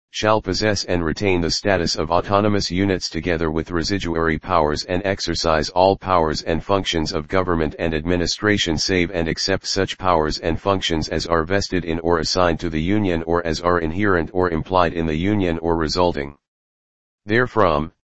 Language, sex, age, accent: English, male, 40-59, American